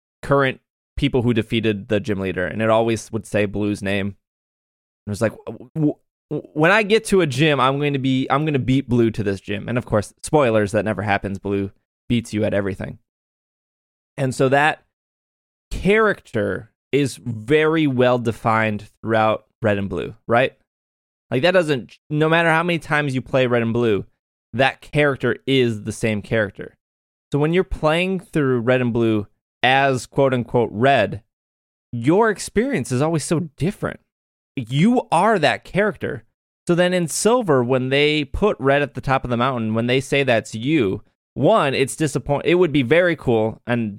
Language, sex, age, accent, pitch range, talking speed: English, male, 20-39, American, 105-140 Hz, 175 wpm